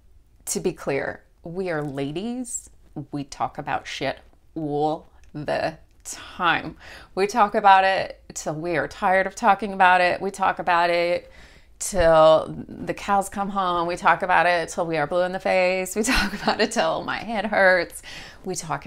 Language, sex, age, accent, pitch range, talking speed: English, female, 30-49, American, 155-195 Hz, 175 wpm